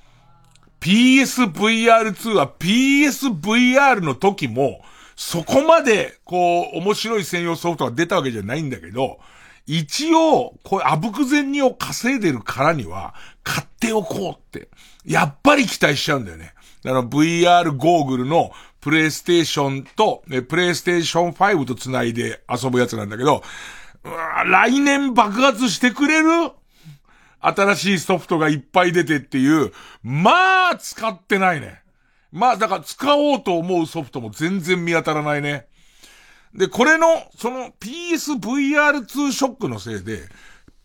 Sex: male